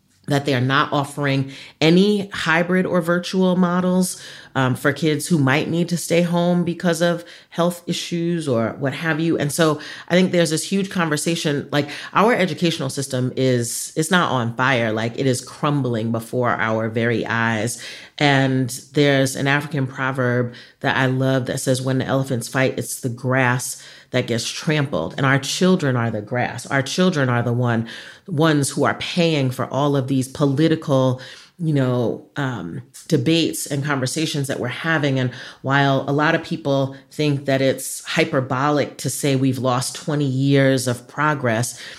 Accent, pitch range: American, 125-155 Hz